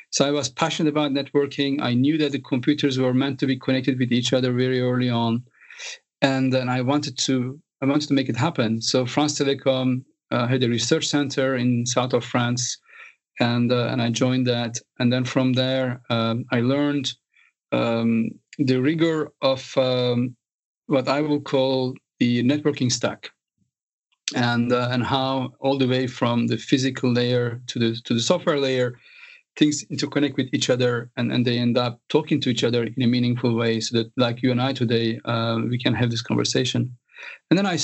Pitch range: 120-140 Hz